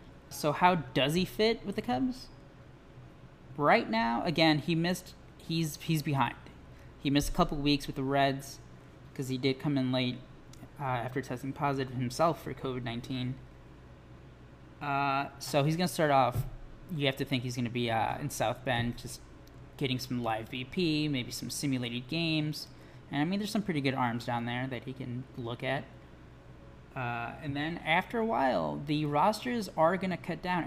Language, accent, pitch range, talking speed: English, American, 125-150 Hz, 180 wpm